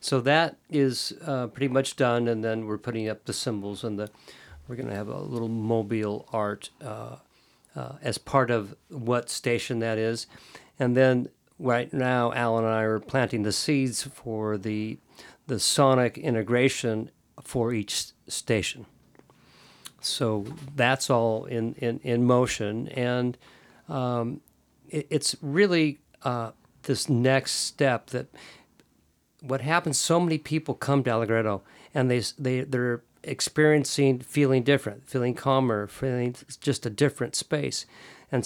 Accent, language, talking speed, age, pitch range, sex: American, English, 145 wpm, 50-69, 115-140 Hz, male